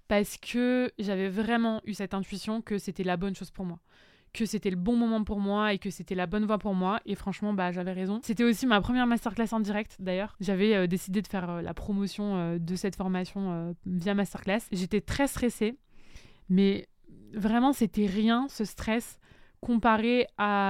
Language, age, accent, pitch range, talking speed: French, 20-39, French, 190-220 Hz, 195 wpm